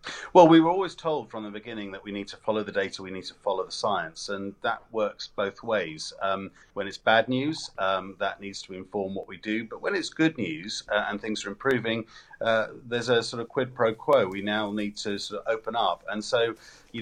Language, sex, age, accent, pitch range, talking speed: English, male, 40-59, British, 100-115 Hz, 240 wpm